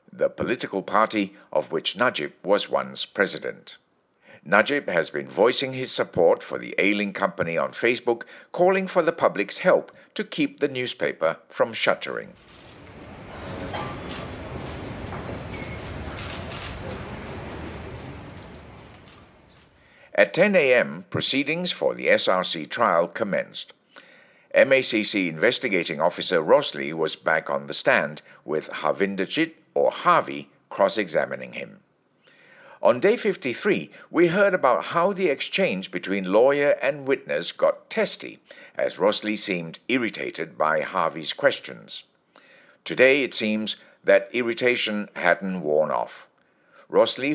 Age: 60-79